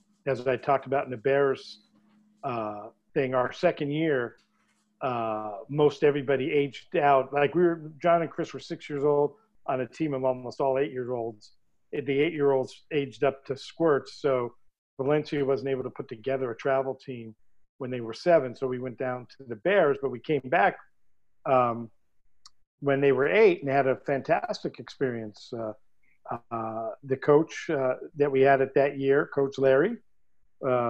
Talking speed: 175 wpm